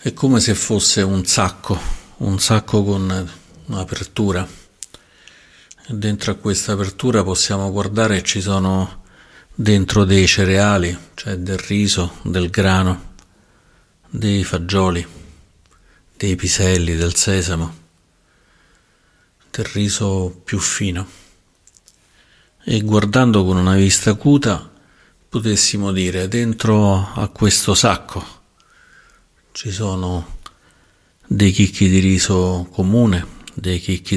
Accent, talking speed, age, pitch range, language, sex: native, 100 wpm, 50-69, 90-105 Hz, Italian, male